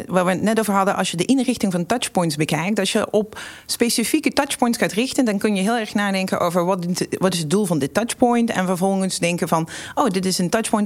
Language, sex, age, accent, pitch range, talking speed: Dutch, female, 40-59, Dutch, 180-240 Hz, 240 wpm